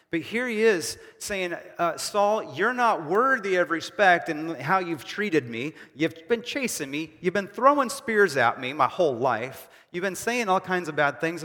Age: 30-49